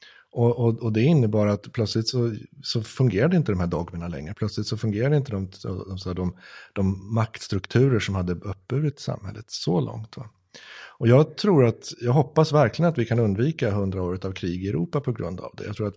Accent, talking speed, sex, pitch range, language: Swedish, 205 wpm, male, 95-125 Hz, English